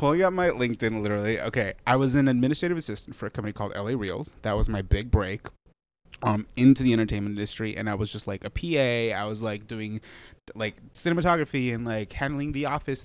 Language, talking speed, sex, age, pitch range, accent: English, 205 wpm, male, 20-39, 100-125 Hz, American